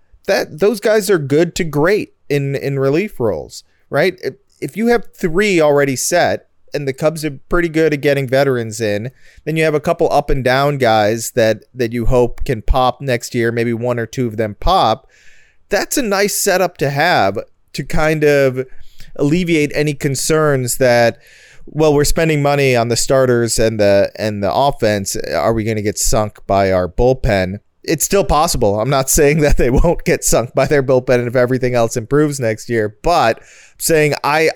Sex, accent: male, American